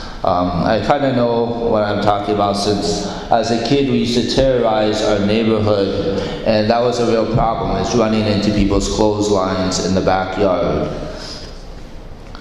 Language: English